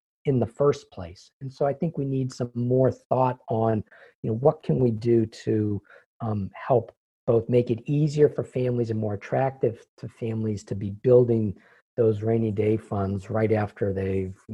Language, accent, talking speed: English, American, 180 wpm